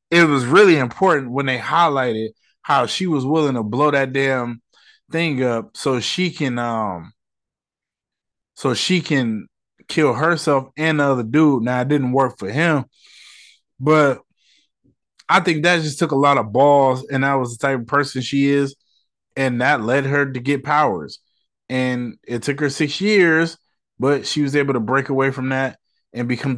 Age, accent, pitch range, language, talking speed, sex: 20-39, American, 120-150 Hz, English, 180 wpm, male